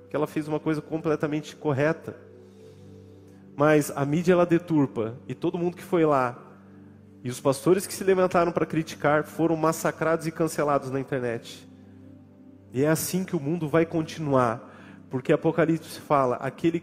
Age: 30-49